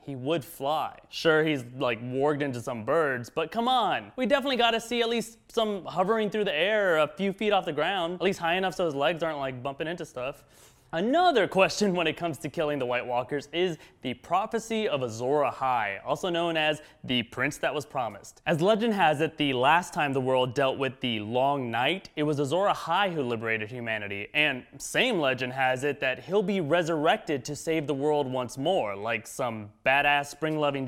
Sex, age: male, 20-39